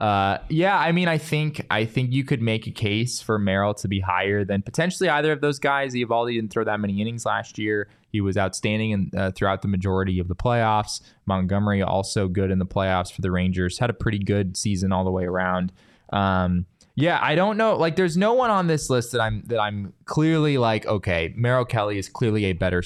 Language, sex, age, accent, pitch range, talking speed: English, male, 20-39, American, 95-120 Hz, 225 wpm